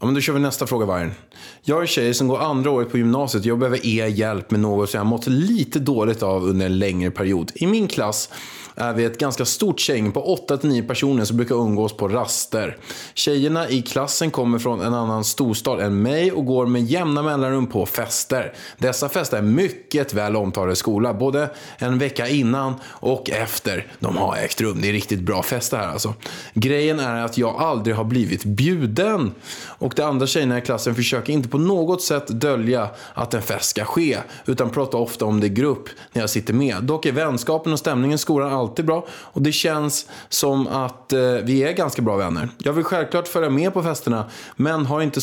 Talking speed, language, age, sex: 210 wpm, Swedish, 20-39, male